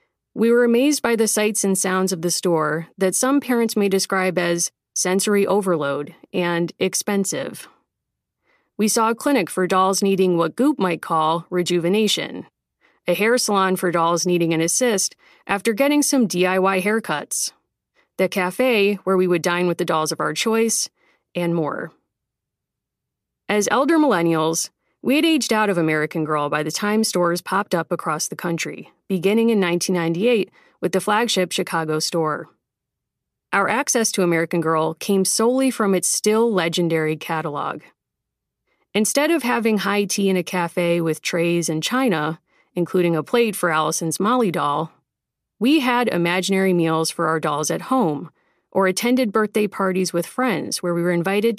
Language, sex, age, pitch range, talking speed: English, female, 30-49, 170-220 Hz, 160 wpm